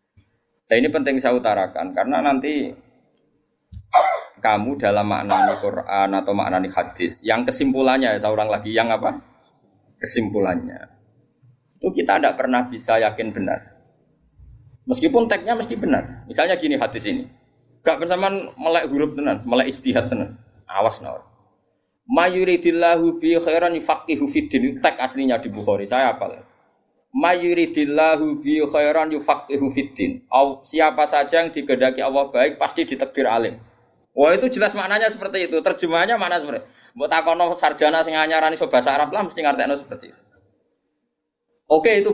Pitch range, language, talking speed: 135-225 Hz, Indonesian, 120 wpm